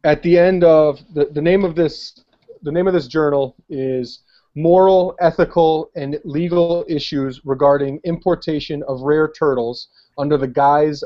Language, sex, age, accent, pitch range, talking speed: English, male, 30-49, American, 130-160 Hz, 150 wpm